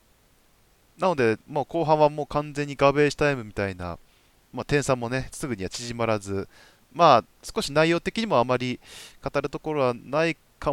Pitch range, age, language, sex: 100-155 Hz, 20-39, Japanese, male